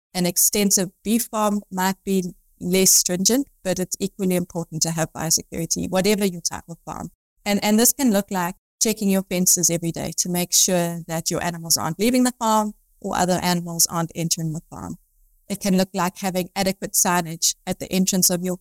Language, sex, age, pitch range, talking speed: English, female, 30-49, 170-195 Hz, 195 wpm